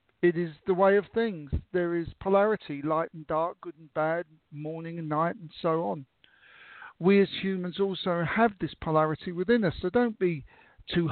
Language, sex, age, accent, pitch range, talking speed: English, male, 50-69, British, 165-210 Hz, 185 wpm